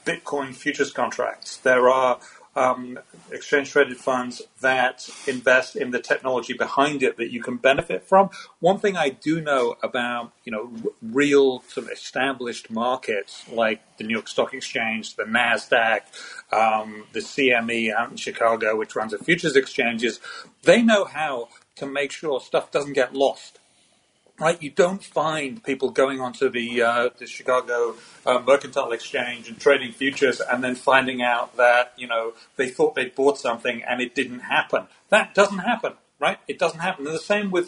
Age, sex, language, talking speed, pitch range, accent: 40-59, male, English, 165 wpm, 125-145 Hz, British